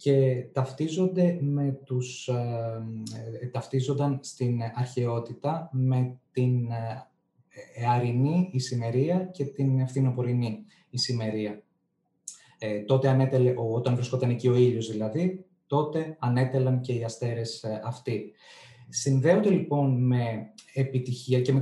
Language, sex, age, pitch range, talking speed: Greek, male, 20-39, 120-140 Hz, 90 wpm